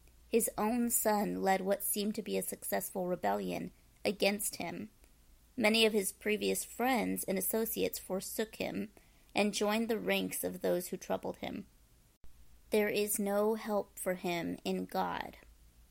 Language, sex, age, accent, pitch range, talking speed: English, female, 30-49, American, 155-215 Hz, 145 wpm